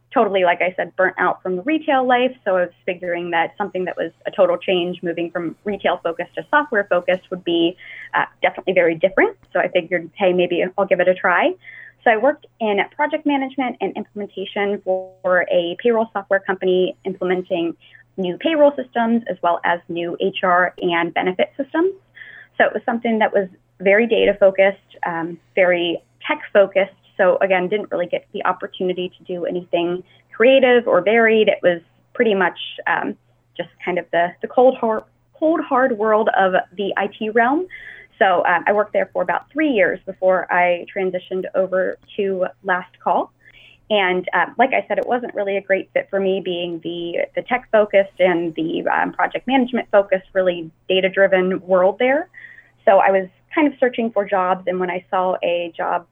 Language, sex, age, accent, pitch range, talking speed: English, female, 20-39, American, 180-230 Hz, 185 wpm